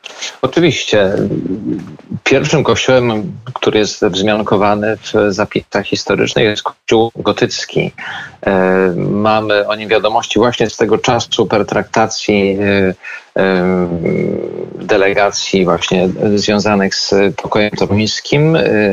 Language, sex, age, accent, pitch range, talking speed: Polish, male, 40-59, native, 95-110 Hz, 90 wpm